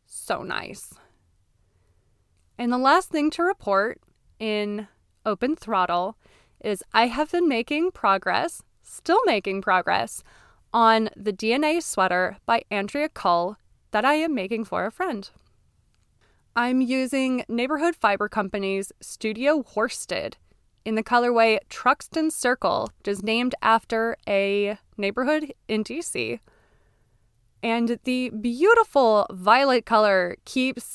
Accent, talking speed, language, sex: American, 115 wpm, English, female